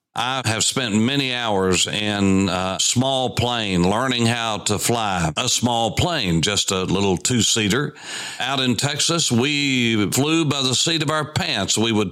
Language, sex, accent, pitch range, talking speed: English, male, American, 105-145 Hz, 165 wpm